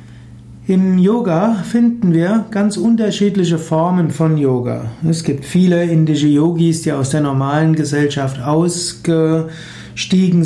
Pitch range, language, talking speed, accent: 140-165 Hz, German, 115 wpm, German